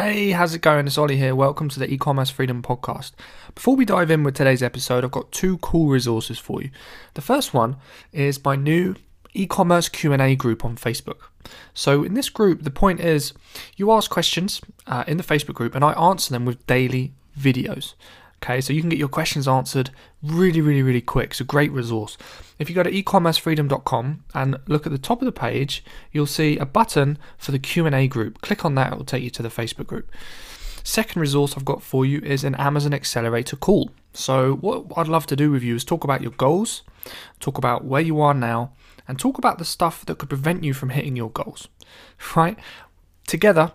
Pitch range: 130-165 Hz